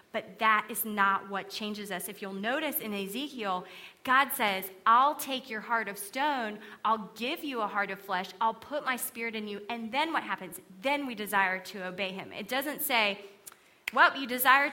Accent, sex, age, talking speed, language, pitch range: American, female, 30-49, 200 wpm, English, 195-235 Hz